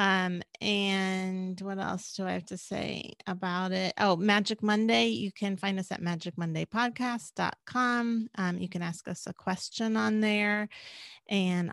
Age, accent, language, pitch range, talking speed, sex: 30-49, American, English, 185-225 Hz, 155 wpm, female